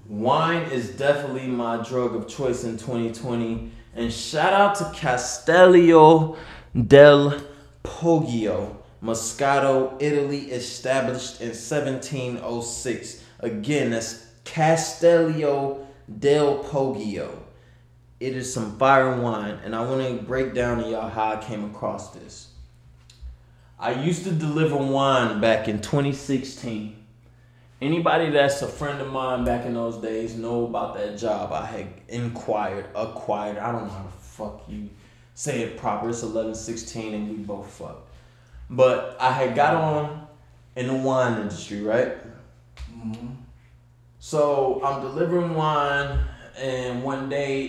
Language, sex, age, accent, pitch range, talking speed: English, male, 20-39, American, 110-140 Hz, 130 wpm